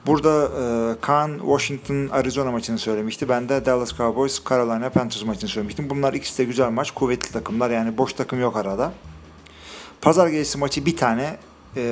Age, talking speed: 40-59, 165 wpm